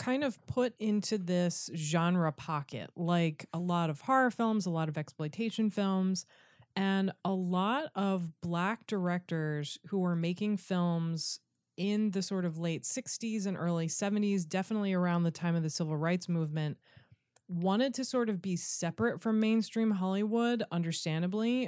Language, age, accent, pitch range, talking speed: English, 20-39, American, 165-210 Hz, 155 wpm